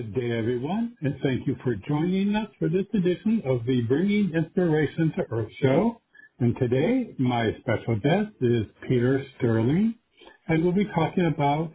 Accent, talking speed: American, 160 wpm